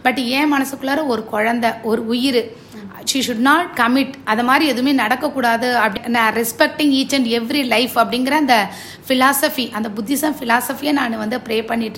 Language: Tamil